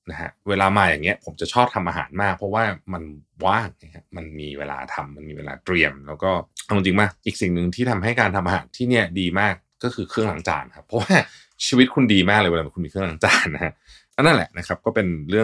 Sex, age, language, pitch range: male, 20-39, Thai, 85-110 Hz